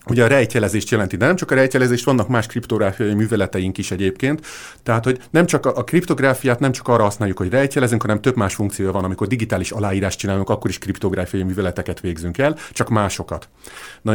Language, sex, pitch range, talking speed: Hungarian, male, 95-120 Hz, 190 wpm